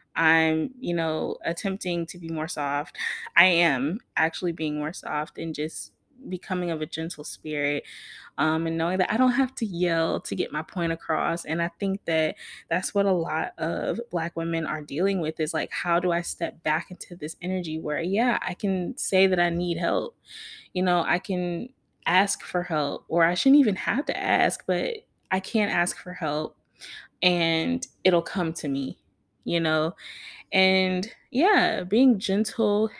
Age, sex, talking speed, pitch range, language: 20-39, female, 180 wpm, 165-205 Hz, English